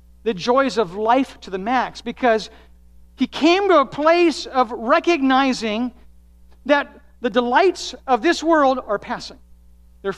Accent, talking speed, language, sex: American, 140 wpm, English, male